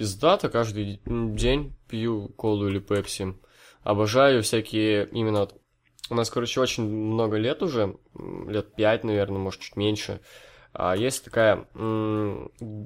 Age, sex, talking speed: 20-39, male, 120 wpm